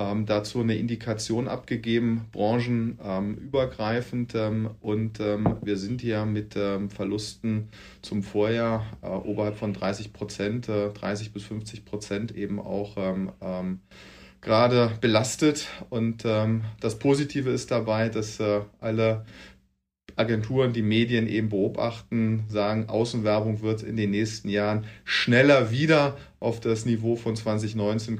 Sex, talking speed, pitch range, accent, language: male, 110 wpm, 100-115 Hz, German, German